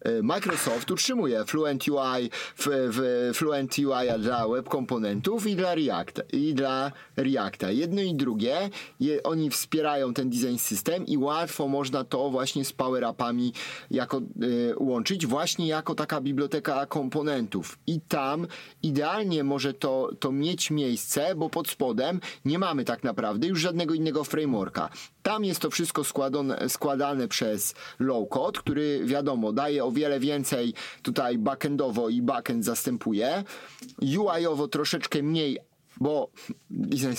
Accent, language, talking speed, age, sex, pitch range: native, Polish, 130 wpm, 30-49, male, 130-165 Hz